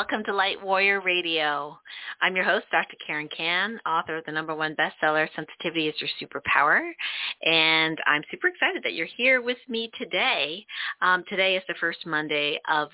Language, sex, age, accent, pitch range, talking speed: English, female, 30-49, American, 155-200 Hz, 175 wpm